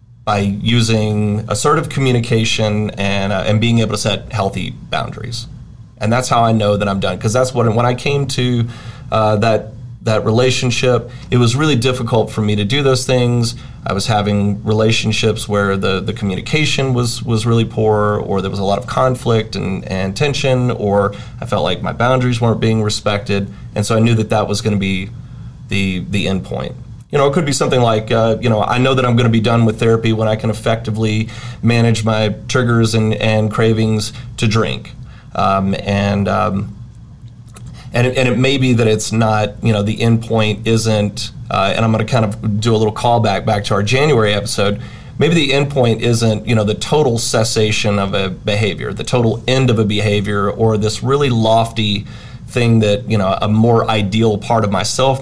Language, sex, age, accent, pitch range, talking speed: English, male, 30-49, American, 105-120 Hz, 200 wpm